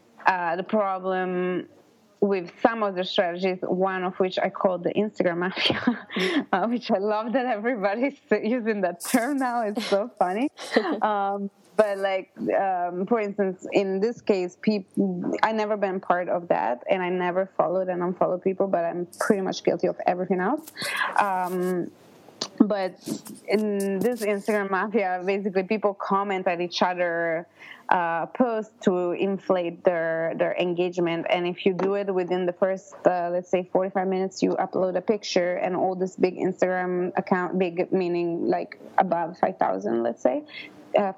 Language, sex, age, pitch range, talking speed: English, female, 20-39, 180-210 Hz, 160 wpm